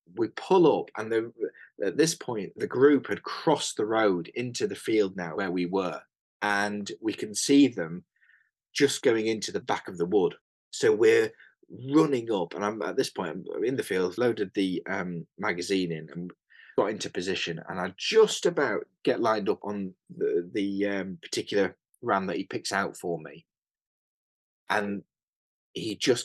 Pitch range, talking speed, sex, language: 95-155 Hz, 180 wpm, male, English